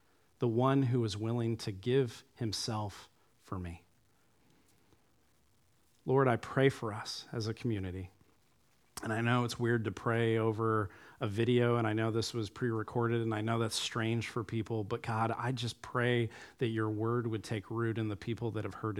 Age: 40-59